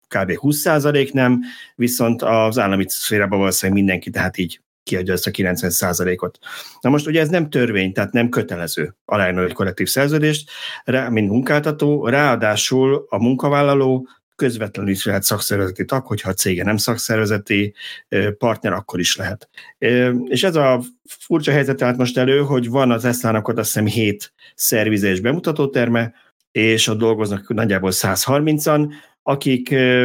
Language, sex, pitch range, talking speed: Hungarian, male, 100-130 Hz, 140 wpm